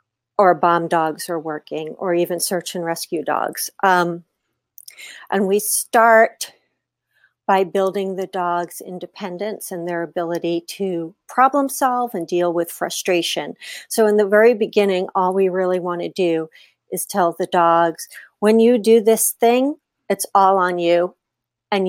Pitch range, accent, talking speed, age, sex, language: 170-200 Hz, American, 150 wpm, 40-59, female, English